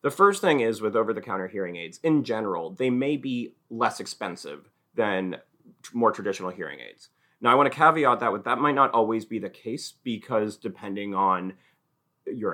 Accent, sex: American, male